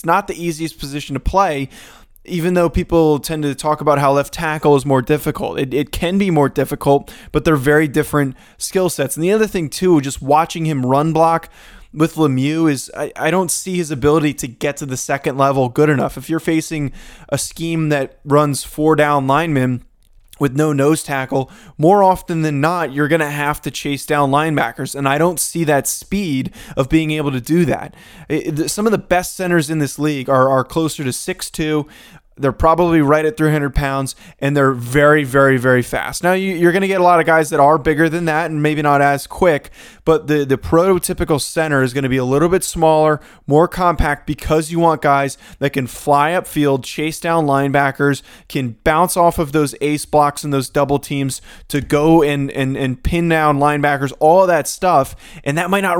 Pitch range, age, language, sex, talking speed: 140-165 Hz, 20-39, English, male, 205 wpm